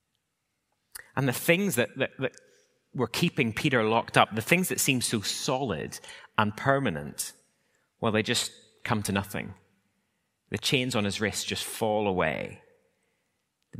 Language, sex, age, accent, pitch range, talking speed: English, male, 30-49, British, 95-120 Hz, 150 wpm